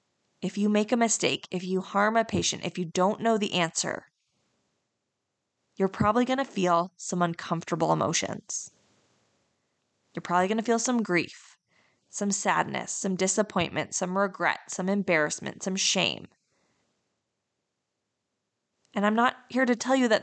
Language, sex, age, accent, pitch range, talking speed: English, female, 20-39, American, 185-225 Hz, 145 wpm